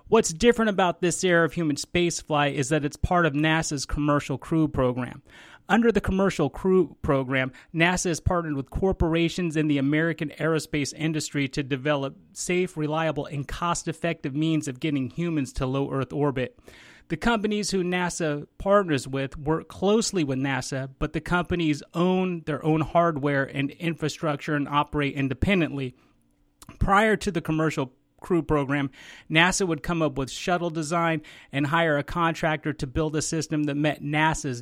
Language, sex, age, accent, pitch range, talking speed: English, male, 30-49, American, 140-170 Hz, 160 wpm